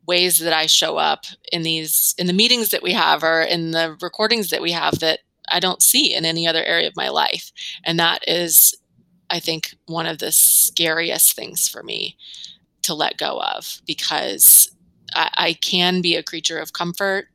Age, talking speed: 20-39, 195 wpm